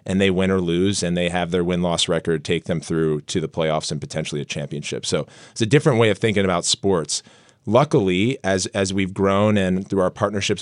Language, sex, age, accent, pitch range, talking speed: English, male, 30-49, American, 95-110 Hz, 220 wpm